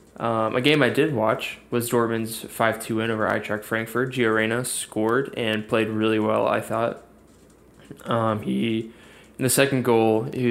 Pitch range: 110-125 Hz